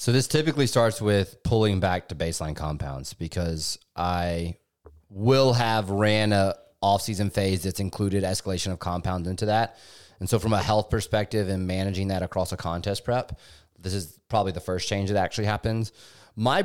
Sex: male